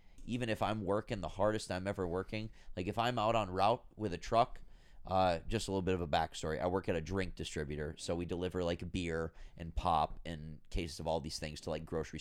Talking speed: 235 wpm